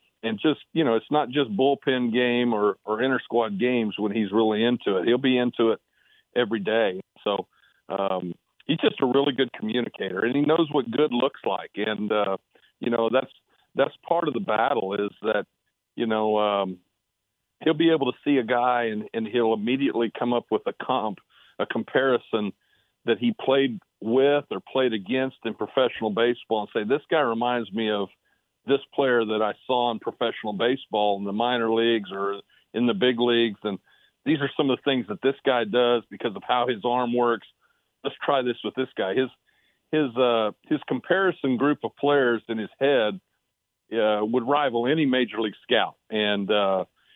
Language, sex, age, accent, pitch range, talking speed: English, male, 50-69, American, 110-135 Hz, 190 wpm